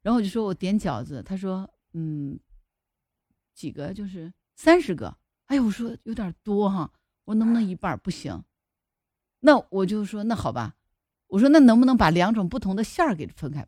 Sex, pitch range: female, 170-240 Hz